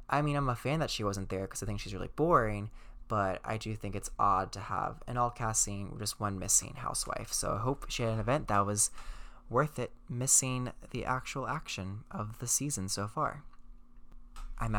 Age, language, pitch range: 20-39, English, 100-120 Hz